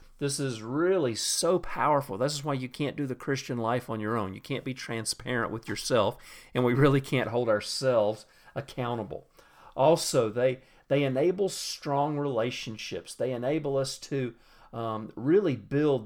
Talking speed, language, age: 160 wpm, English, 40-59